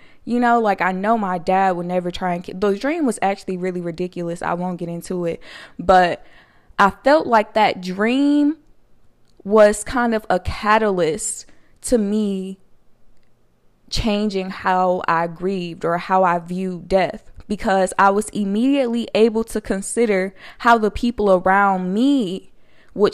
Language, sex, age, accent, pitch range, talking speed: English, female, 20-39, American, 180-220 Hz, 150 wpm